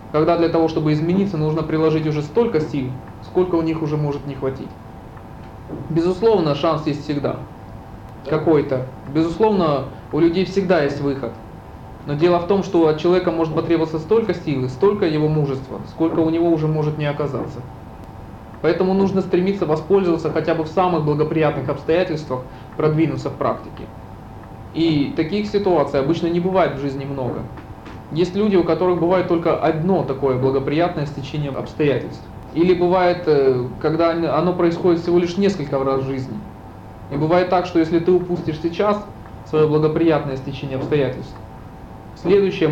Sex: male